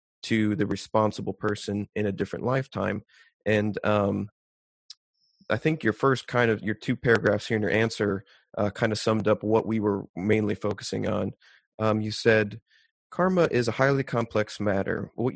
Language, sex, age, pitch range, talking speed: English, male, 30-49, 100-115 Hz, 170 wpm